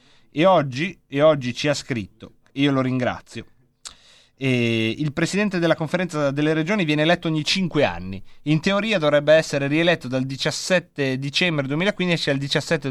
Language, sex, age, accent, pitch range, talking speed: Italian, male, 30-49, native, 130-175 Hz, 160 wpm